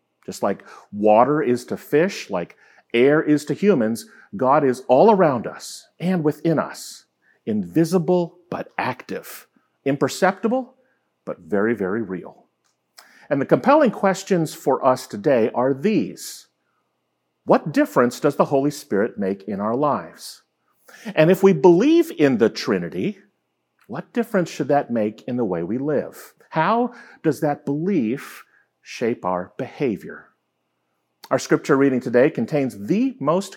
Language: English